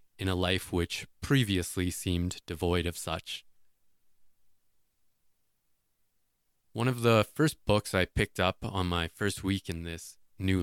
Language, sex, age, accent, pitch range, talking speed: English, male, 20-39, American, 85-105 Hz, 135 wpm